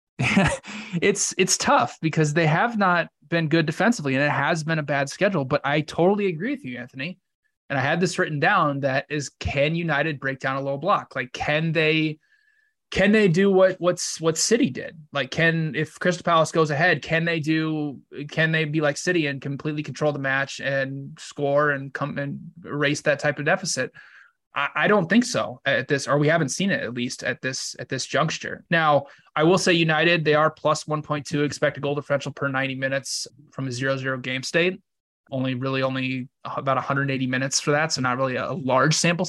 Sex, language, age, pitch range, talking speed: male, English, 20-39, 135-170 Hz, 205 wpm